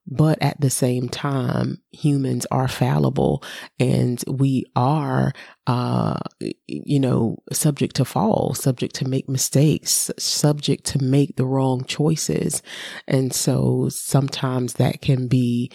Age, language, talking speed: 30-49, English, 125 wpm